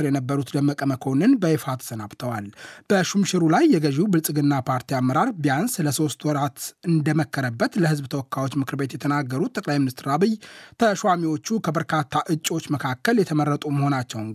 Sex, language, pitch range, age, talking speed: male, Amharic, 140-165 Hz, 30-49, 115 wpm